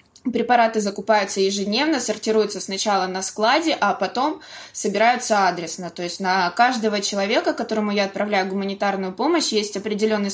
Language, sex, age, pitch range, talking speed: Russian, female, 20-39, 195-225 Hz, 135 wpm